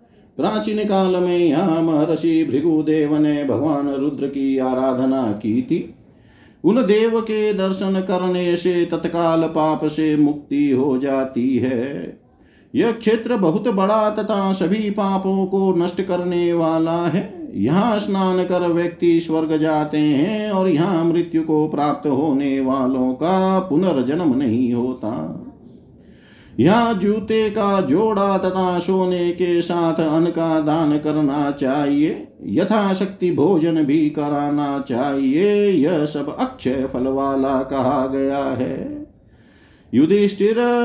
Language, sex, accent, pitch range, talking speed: Hindi, male, native, 150-195 Hz, 120 wpm